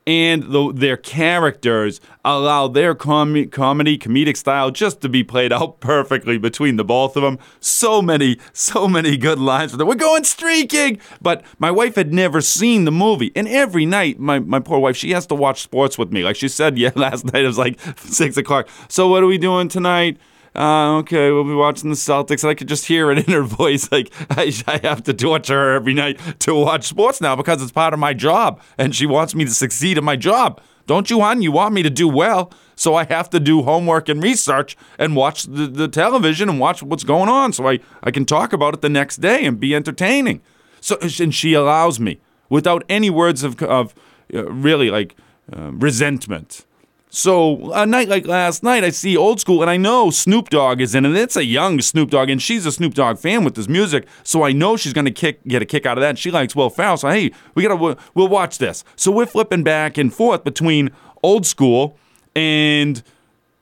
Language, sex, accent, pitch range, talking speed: English, male, American, 140-175 Hz, 220 wpm